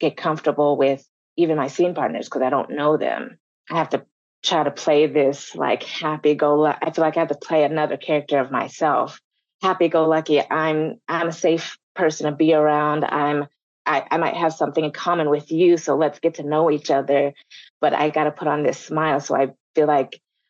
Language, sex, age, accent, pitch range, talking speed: English, female, 20-39, American, 150-170 Hz, 215 wpm